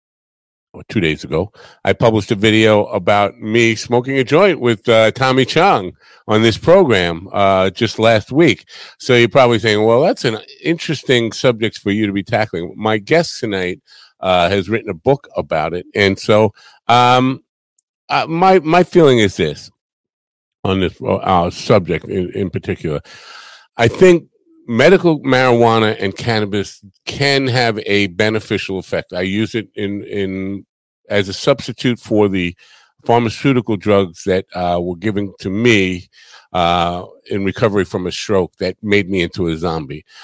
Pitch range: 95-120 Hz